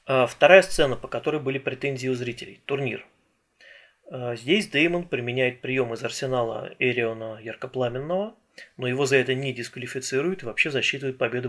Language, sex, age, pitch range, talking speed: Russian, male, 30-49, 120-140 Hz, 140 wpm